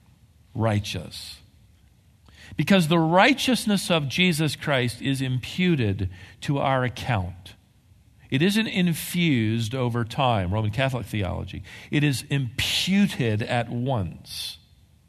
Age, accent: 50-69, American